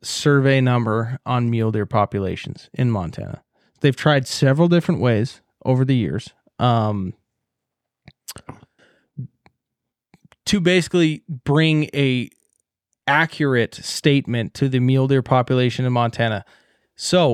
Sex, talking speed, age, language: male, 105 wpm, 20-39, English